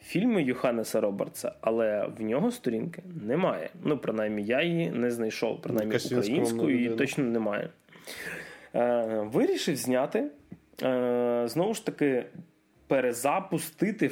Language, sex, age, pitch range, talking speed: Ukrainian, male, 20-39, 115-150 Hz, 105 wpm